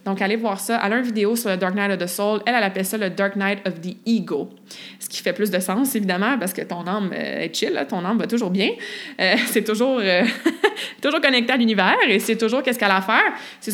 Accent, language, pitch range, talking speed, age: Canadian, French, 195-235 Hz, 270 wpm, 20-39